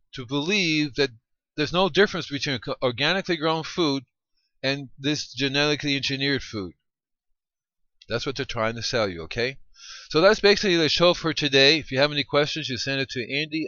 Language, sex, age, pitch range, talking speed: English, male, 40-59, 110-145 Hz, 175 wpm